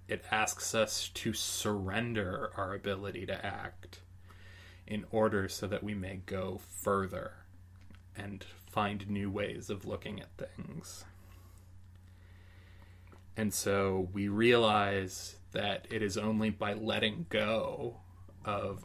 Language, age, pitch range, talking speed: English, 20-39, 90-105 Hz, 120 wpm